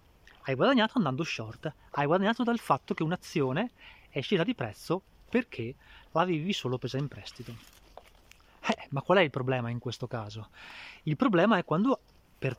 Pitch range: 125-175 Hz